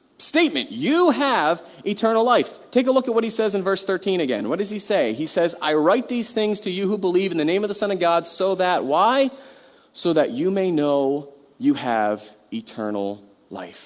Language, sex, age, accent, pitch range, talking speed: English, male, 30-49, American, 180-250 Hz, 215 wpm